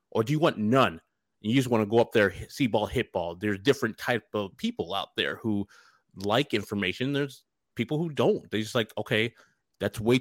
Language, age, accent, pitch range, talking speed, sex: English, 30-49, American, 100-125 Hz, 210 wpm, male